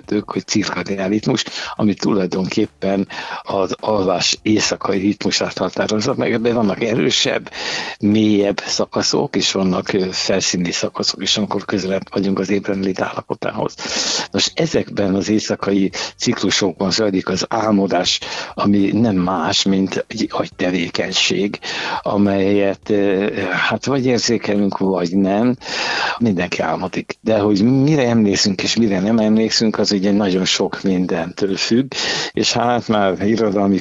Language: Hungarian